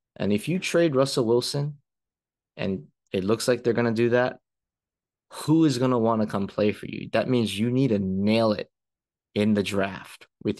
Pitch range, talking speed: 100-120 Hz, 205 wpm